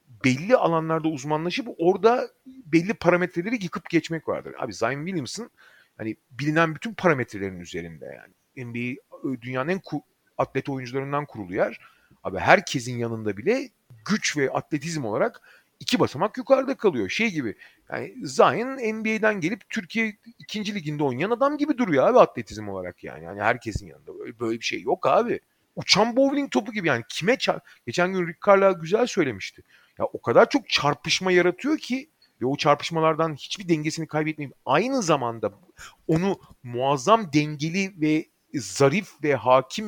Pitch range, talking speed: 140-220 Hz, 145 wpm